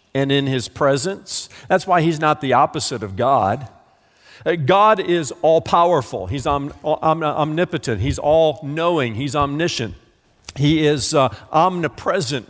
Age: 50-69